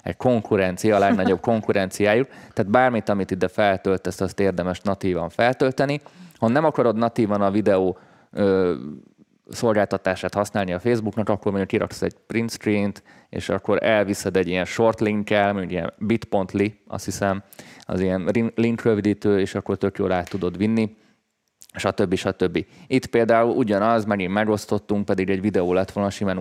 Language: Hungarian